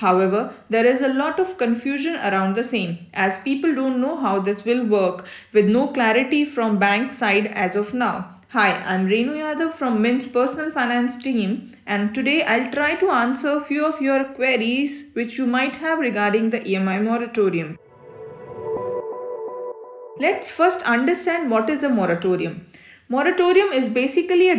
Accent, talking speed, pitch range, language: Indian, 160 wpm, 215-295 Hz, English